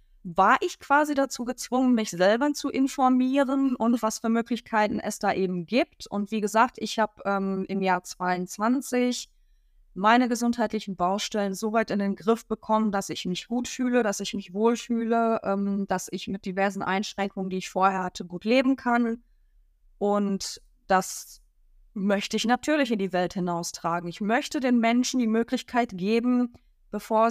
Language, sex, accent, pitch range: German, female, German, 185-230 Hz